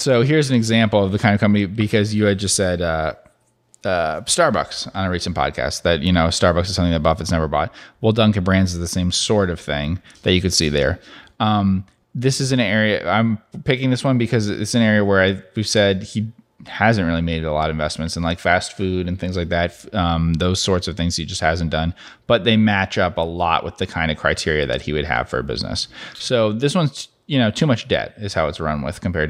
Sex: male